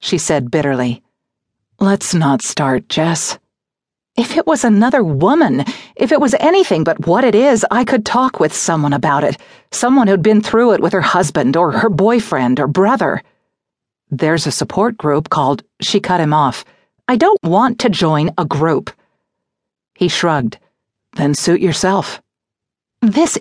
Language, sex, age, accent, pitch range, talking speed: English, female, 50-69, American, 150-215 Hz, 160 wpm